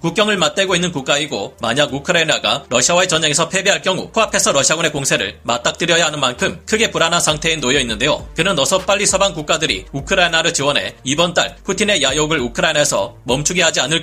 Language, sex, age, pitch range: Korean, male, 30-49, 150-190 Hz